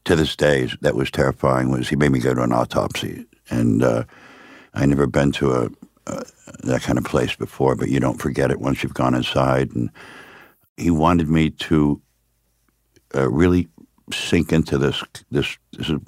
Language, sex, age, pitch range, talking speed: English, male, 60-79, 65-75 Hz, 180 wpm